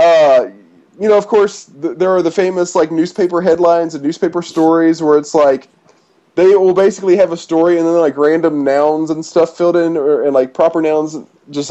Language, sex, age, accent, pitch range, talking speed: English, male, 20-39, American, 145-185 Hz, 200 wpm